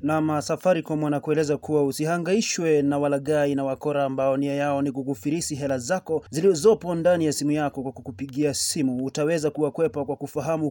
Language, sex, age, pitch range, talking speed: Swahili, male, 30-49, 145-165 Hz, 155 wpm